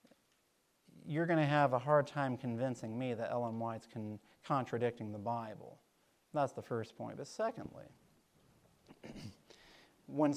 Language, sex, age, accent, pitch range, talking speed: English, male, 40-59, American, 130-170 Hz, 125 wpm